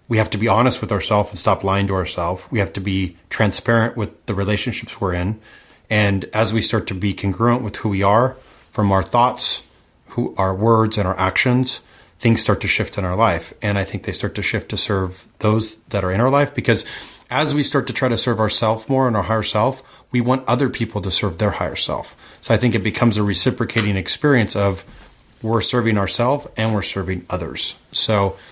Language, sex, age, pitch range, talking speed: English, male, 30-49, 100-120 Hz, 220 wpm